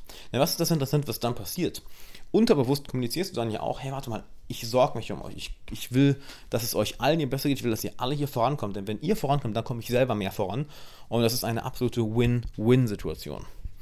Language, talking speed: German, 240 wpm